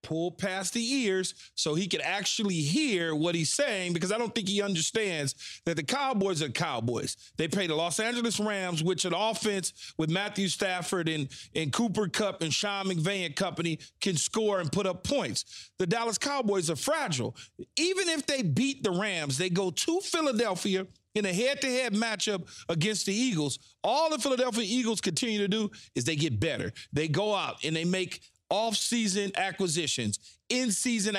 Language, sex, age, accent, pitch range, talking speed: English, male, 40-59, American, 170-230 Hz, 175 wpm